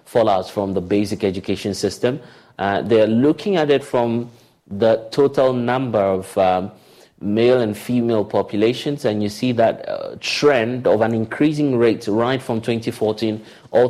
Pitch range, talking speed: 100-125 Hz, 155 wpm